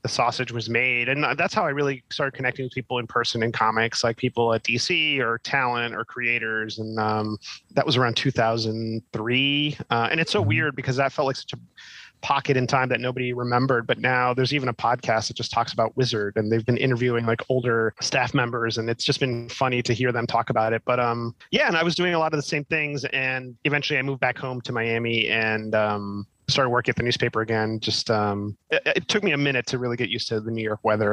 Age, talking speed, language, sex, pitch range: 30-49, 235 wpm, English, male, 115-135 Hz